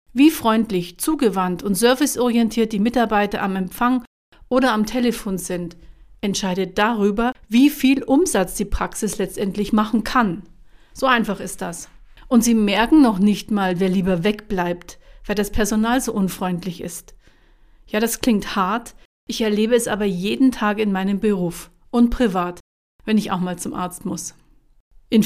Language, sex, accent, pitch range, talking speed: German, female, German, 195-235 Hz, 155 wpm